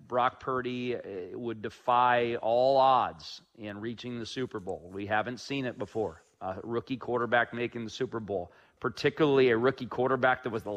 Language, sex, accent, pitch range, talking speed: English, male, American, 115-140 Hz, 165 wpm